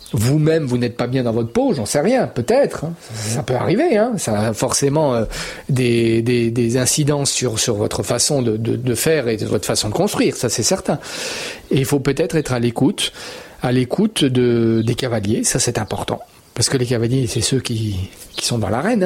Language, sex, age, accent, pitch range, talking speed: French, male, 40-59, French, 115-145 Hz, 210 wpm